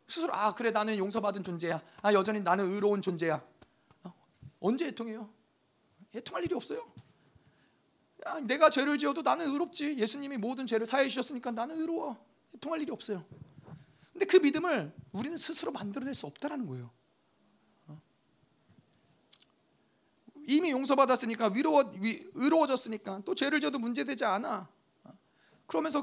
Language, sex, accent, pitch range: Korean, male, native, 195-275 Hz